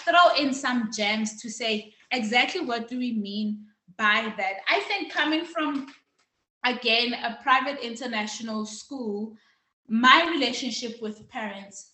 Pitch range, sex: 210-275 Hz, female